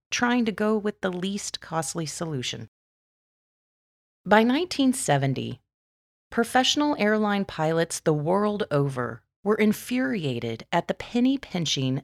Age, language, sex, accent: 30-49, English, female, American